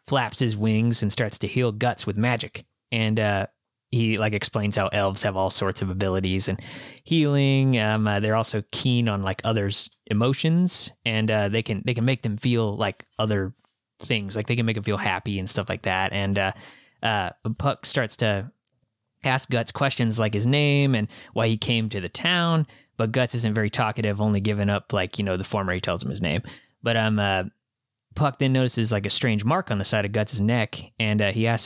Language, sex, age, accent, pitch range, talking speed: English, male, 20-39, American, 105-125 Hz, 215 wpm